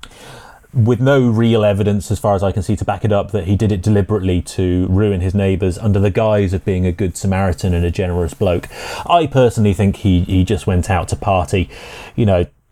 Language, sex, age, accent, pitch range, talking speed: English, male, 30-49, British, 100-125 Hz, 220 wpm